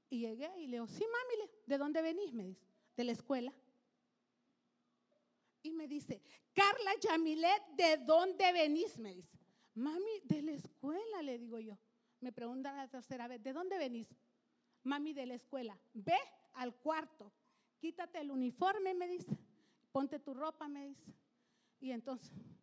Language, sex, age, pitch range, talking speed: English, female, 40-59, 250-360 Hz, 155 wpm